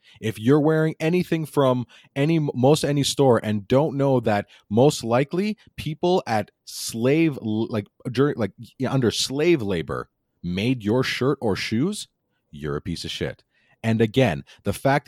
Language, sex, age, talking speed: English, male, 30-49, 160 wpm